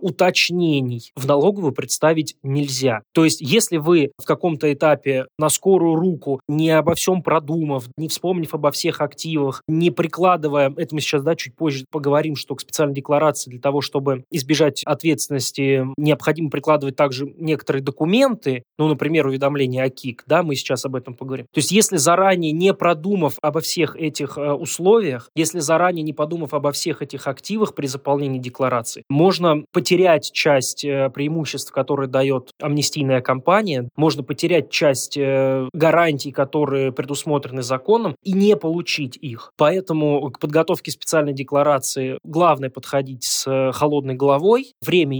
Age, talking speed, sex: 20-39, 145 wpm, male